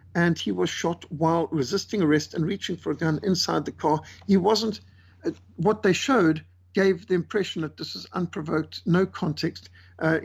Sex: male